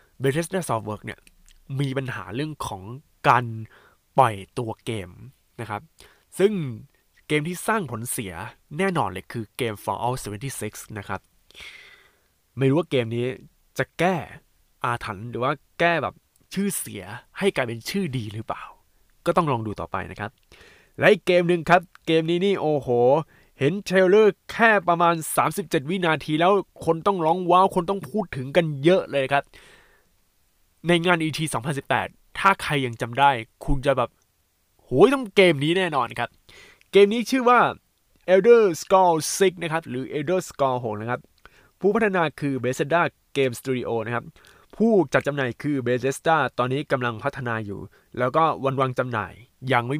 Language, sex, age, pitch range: Thai, male, 20-39, 120-175 Hz